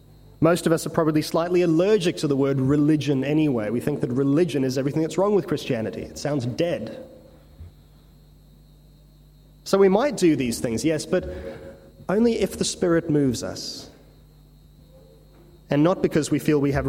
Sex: male